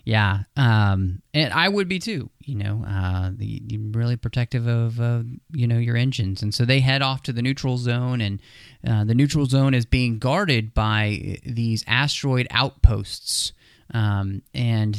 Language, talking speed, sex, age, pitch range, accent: English, 170 wpm, male, 30-49, 110-130 Hz, American